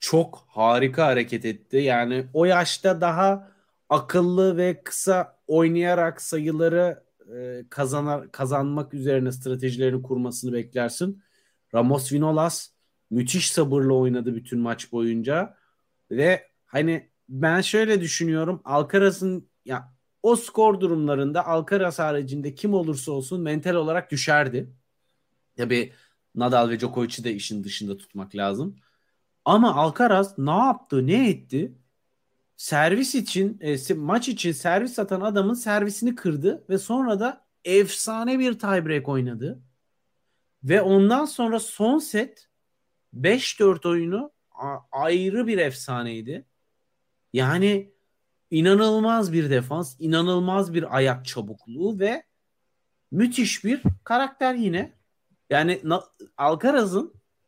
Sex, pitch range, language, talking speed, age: male, 130-195 Hz, Turkish, 105 wpm, 40-59